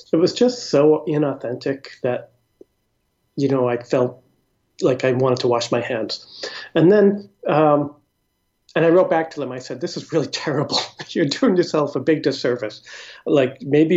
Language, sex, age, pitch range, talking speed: English, male, 40-59, 125-150 Hz, 170 wpm